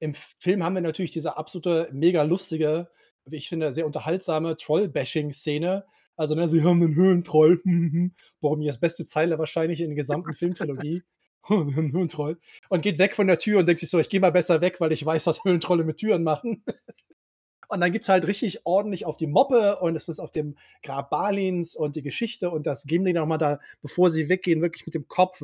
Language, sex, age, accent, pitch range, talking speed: German, male, 20-39, German, 155-185 Hz, 205 wpm